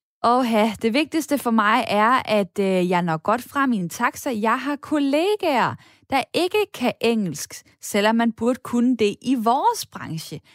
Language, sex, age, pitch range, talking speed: Danish, female, 10-29, 200-275 Hz, 175 wpm